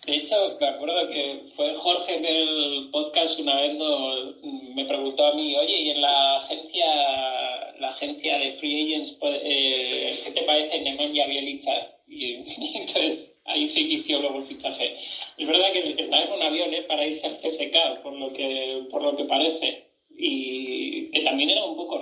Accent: Spanish